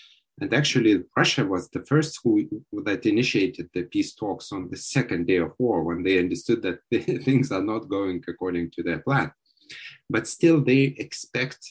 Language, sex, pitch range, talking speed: English, male, 95-150 Hz, 180 wpm